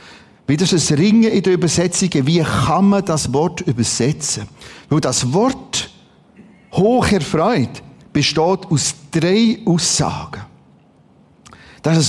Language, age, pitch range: German, 50-69, 135-185 Hz